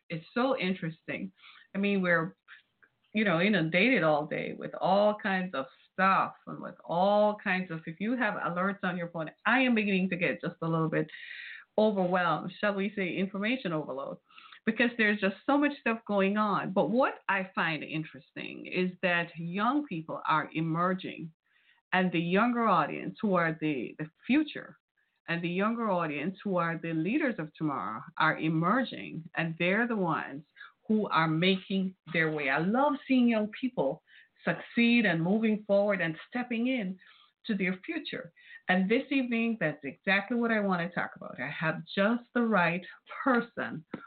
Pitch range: 170-225 Hz